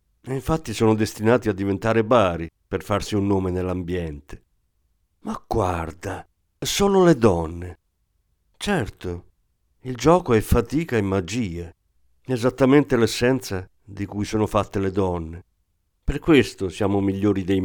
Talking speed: 120 wpm